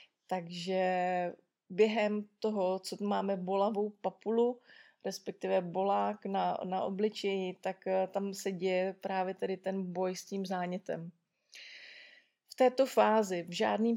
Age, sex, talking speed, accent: 20-39, female, 120 wpm, native